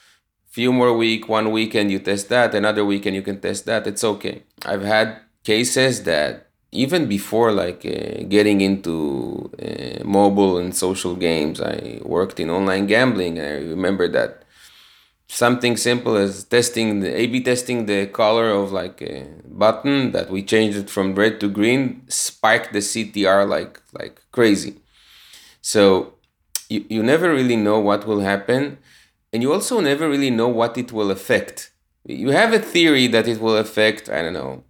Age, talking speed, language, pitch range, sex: 30-49, 165 wpm, English, 100-120 Hz, male